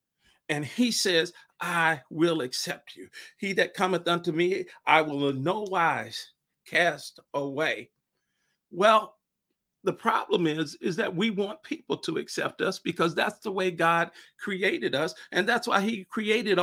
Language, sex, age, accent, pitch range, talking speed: English, male, 50-69, American, 150-190 Hz, 155 wpm